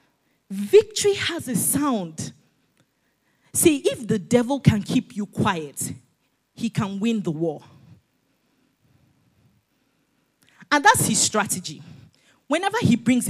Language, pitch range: English, 175-275 Hz